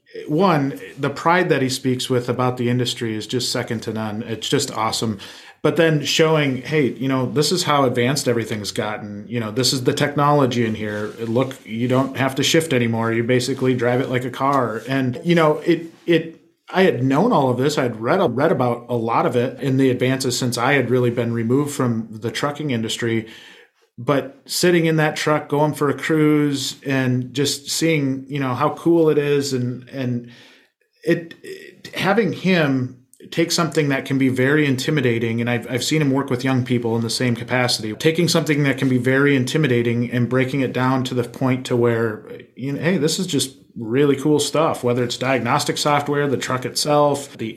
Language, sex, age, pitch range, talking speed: English, male, 30-49, 120-150 Hz, 205 wpm